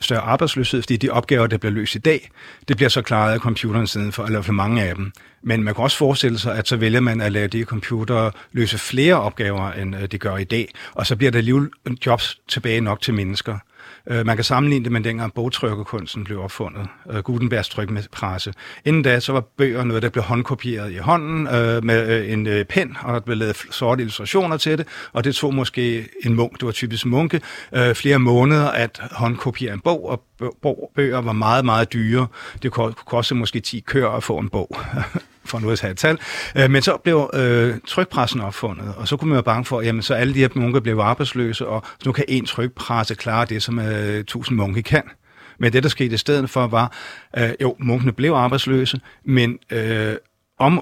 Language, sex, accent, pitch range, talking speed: Danish, male, native, 110-130 Hz, 205 wpm